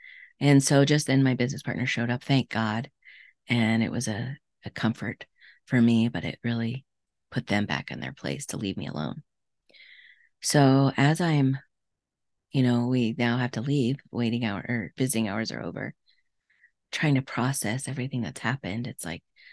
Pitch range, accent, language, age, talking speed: 120-140 Hz, American, English, 30-49, 175 wpm